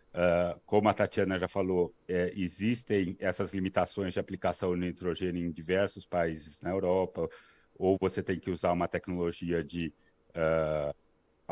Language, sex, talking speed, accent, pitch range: Portuguese, male, 145 wpm, Brazilian, 85-105 Hz